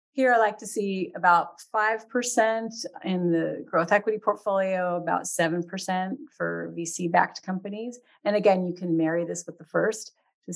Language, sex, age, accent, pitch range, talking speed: English, female, 40-59, American, 170-205 Hz, 160 wpm